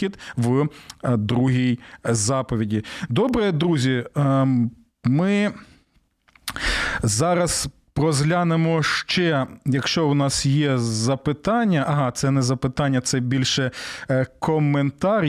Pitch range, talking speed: 130-165 Hz, 80 wpm